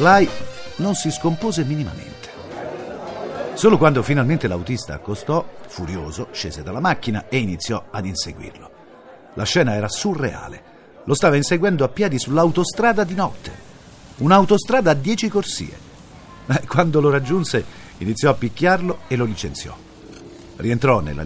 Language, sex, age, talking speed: Italian, male, 50-69, 125 wpm